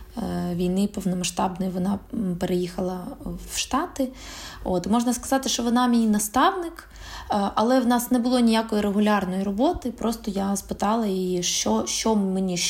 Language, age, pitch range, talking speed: Ukrainian, 20-39, 180-230 Hz, 130 wpm